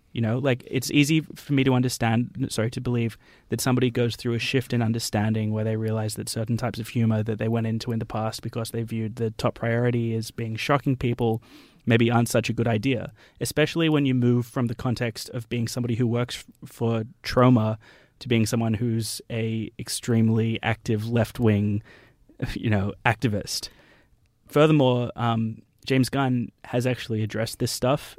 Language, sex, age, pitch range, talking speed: English, male, 20-39, 110-125 Hz, 185 wpm